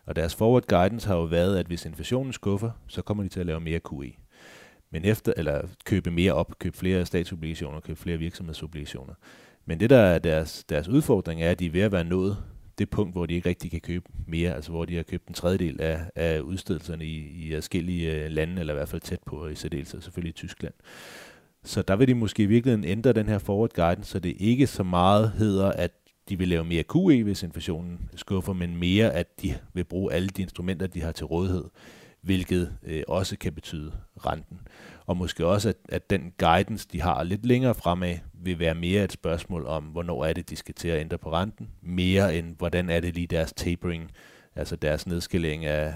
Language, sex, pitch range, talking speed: Danish, male, 80-95 Hz, 215 wpm